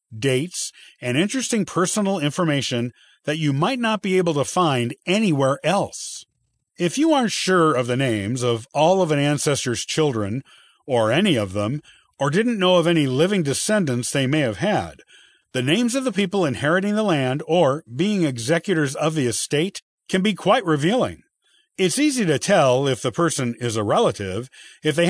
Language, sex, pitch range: English, male, 130-190 Hz